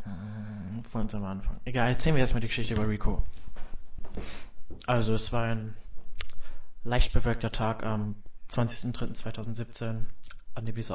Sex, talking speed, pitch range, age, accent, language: male, 125 wpm, 105-120 Hz, 20-39, German, German